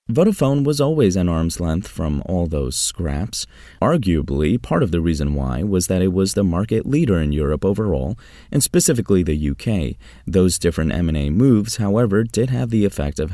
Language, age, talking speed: English, 30-49, 180 wpm